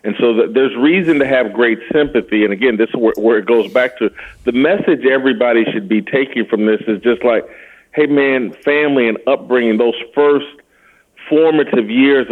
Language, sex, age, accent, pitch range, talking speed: English, male, 40-59, American, 115-145 Hz, 185 wpm